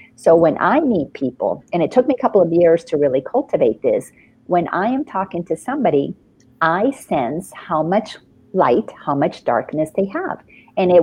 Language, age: English, 50-69